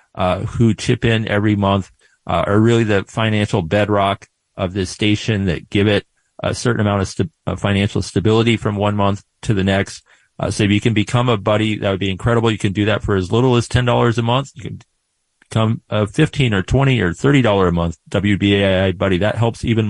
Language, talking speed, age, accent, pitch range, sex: English, 215 wpm, 40-59, American, 100-115 Hz, male